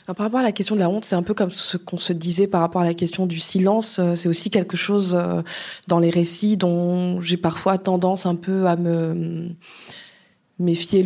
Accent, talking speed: French, 210 wpm